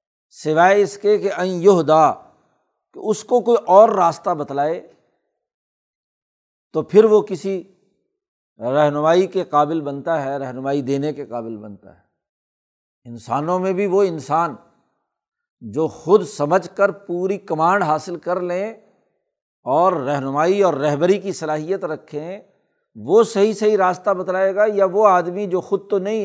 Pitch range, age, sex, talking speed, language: 150-200 Hz, 60-79, male, 140 wpm, Urdu